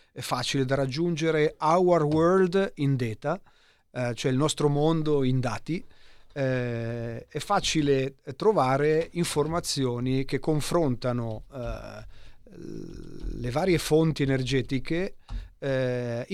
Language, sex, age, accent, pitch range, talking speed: Italian, male, 40-59, native, 120-145 Hz, 105 wpm